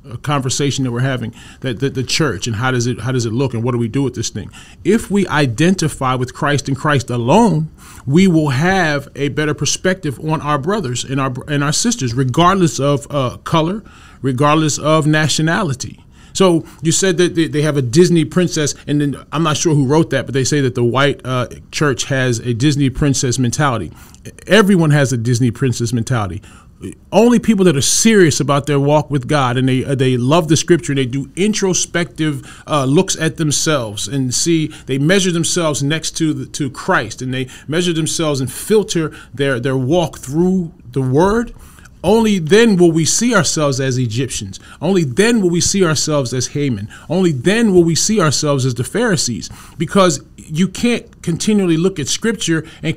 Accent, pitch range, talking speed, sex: American, 130-175 Hz, 195 wpm, male